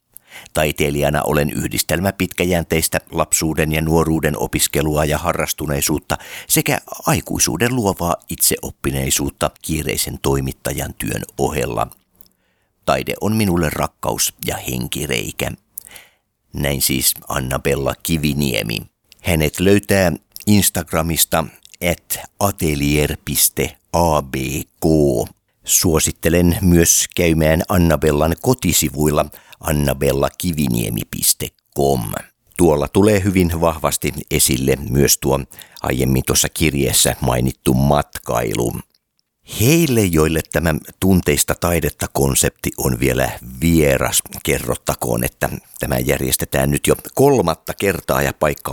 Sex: male